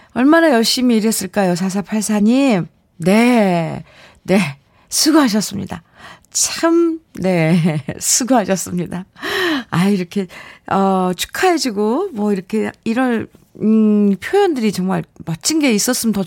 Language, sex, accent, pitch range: Korean, female, native, 180-240 Hz